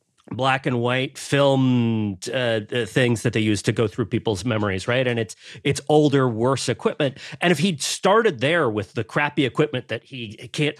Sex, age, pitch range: male, 30-49, 110-140 Hz